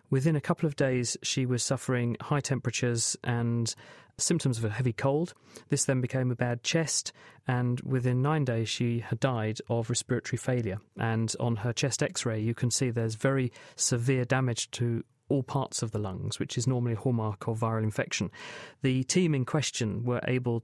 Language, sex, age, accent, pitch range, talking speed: English, male, 40-59, British, 115-135 Hz, 185 wpm